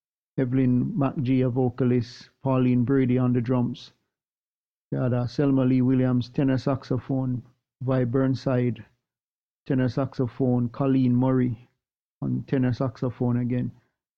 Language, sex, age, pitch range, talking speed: English, male, 50-69, 125-135 Hz, 110 wpm